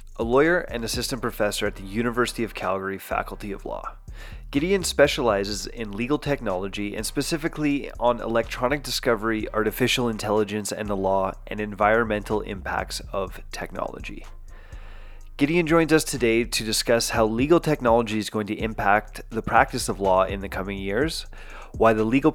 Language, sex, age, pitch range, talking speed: English, male, 30-49, 105-130 Hz, 155 wpm